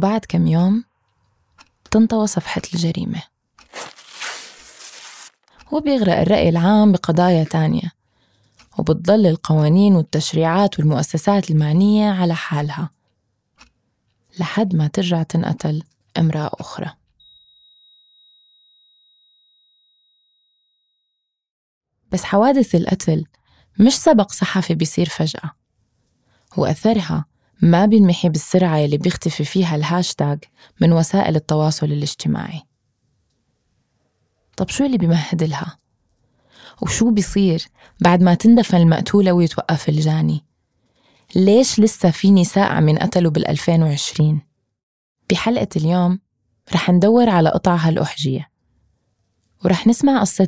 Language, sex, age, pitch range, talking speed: Arabic, female, 20-39, 155-190 Hz, 90 wpm